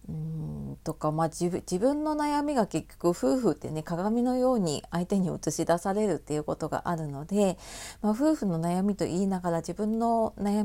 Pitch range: 155-205 Hz